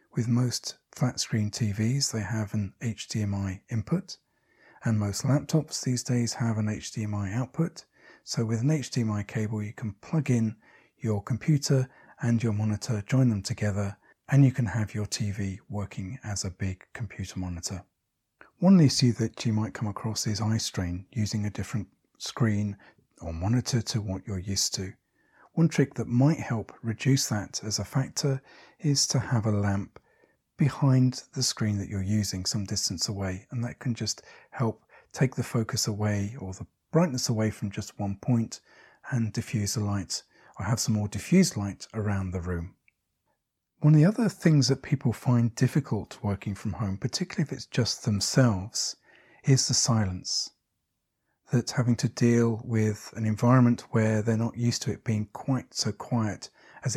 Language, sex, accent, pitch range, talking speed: English, male, British, 105-130 Hz, 170 wpm